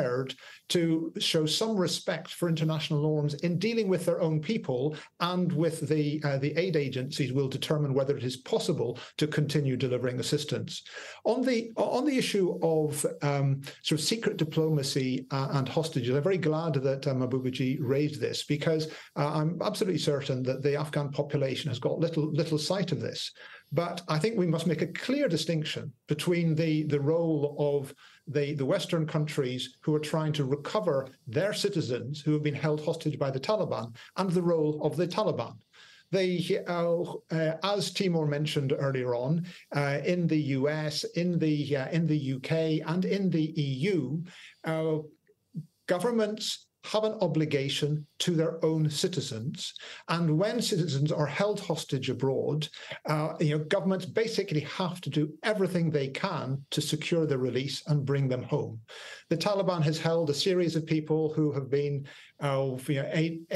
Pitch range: 145-170 Hz